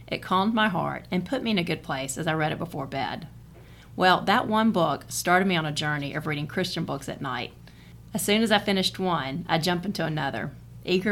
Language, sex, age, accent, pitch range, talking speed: English, female, 40-59, American, 155-185 Hz, 230 wpm